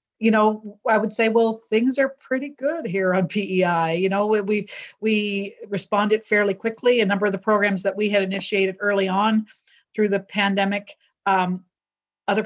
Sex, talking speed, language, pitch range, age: female, 175 wpm, English, 185-215 Hz, 40-59